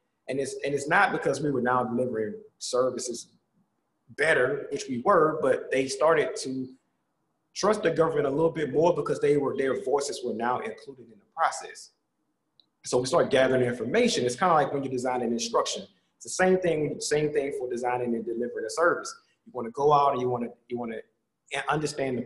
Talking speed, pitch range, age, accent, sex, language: 210 wpm, 125-165 Hz, 30-49, American, male, English